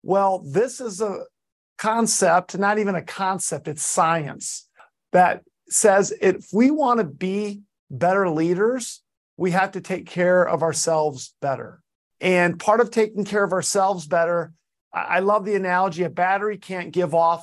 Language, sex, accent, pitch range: English, male, American, 165-200 Hz